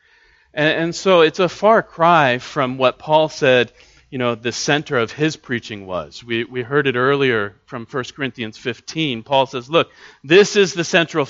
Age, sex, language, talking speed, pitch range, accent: 40-59, male, English, 180 wpm, 125-160 Hz, American